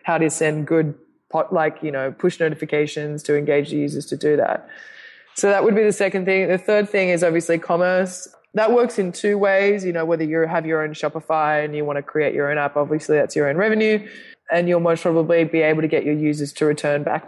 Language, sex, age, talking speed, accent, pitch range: English, female, 20-39, 240 wpm, Australian, 155-175 Hz